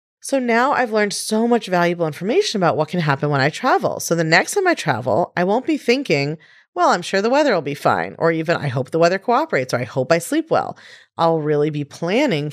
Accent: American